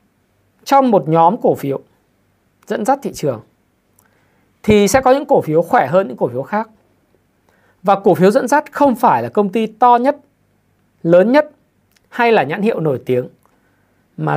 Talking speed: 175 wpm